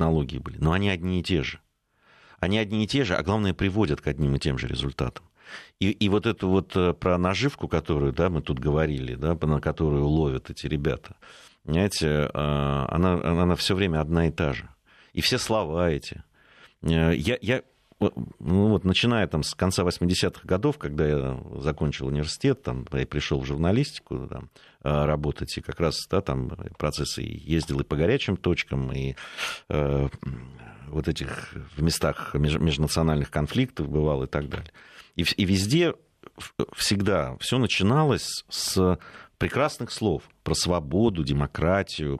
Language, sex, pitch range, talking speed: Russian, male, 75-105 Hz, 155 wpm